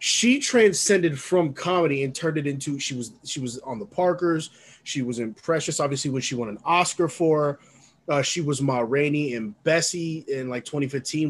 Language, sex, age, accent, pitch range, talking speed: English, male, 20-39, American, 135-170 Hz, 190 wpm